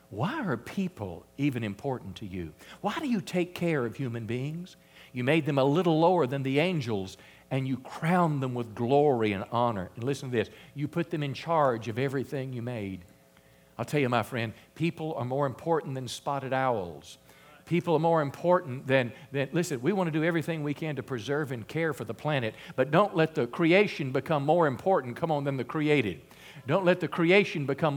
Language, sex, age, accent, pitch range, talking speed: English, male, 50-69, American, 115-160 Hz, 205 wpm